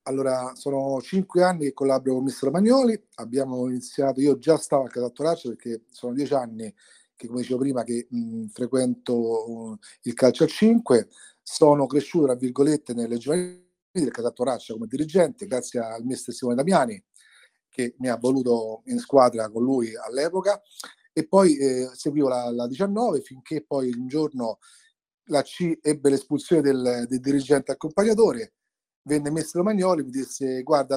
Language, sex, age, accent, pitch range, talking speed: Italian, male, 40-59, native, 125-155 Hz, 160 wpm